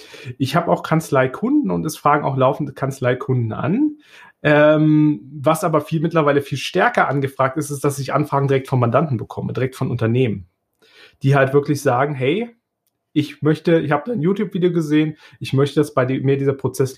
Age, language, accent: 30-49, German, German